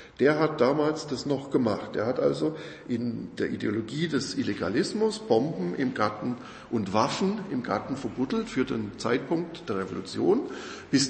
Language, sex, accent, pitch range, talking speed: German, male, German, 120-155 Hz, 150 wpm